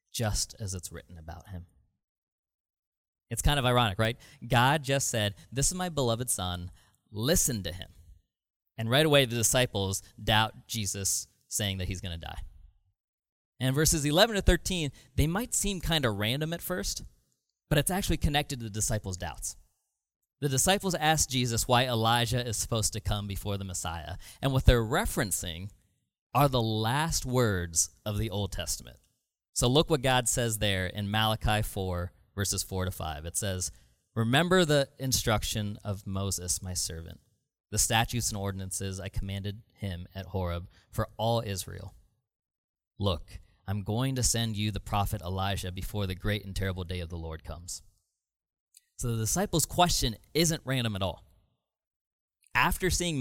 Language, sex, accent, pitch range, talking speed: English, male, American, 90-125 Hz, 160 wpm